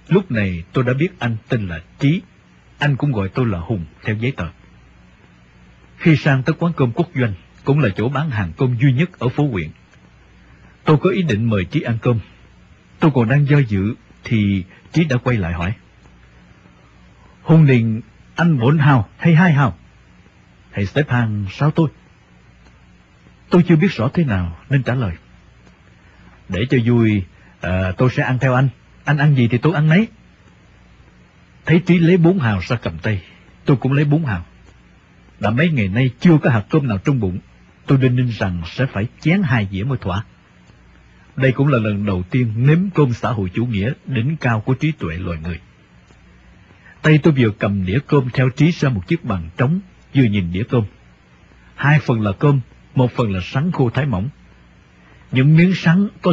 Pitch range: 95-145 Hz